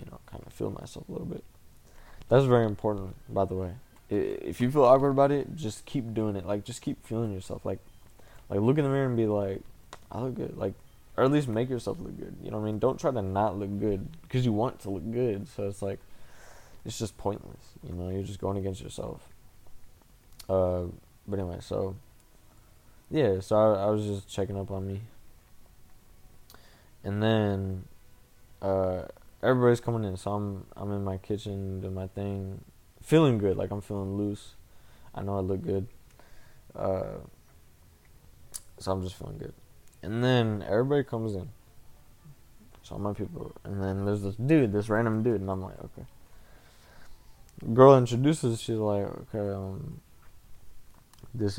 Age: 20-39